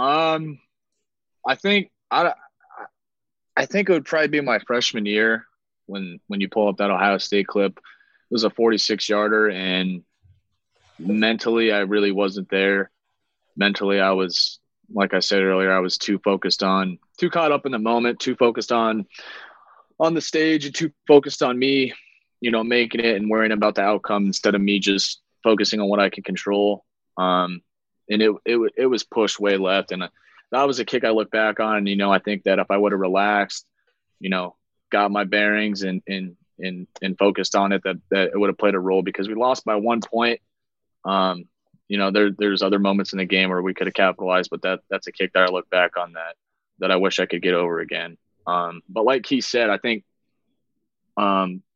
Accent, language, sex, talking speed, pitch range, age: American, English, male, 205 wpm, 95-110 Hz, 20-39